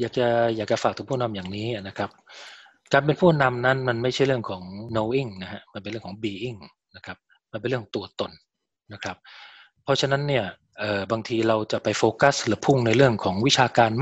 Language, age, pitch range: Thai, 20-39, 105-125 Hz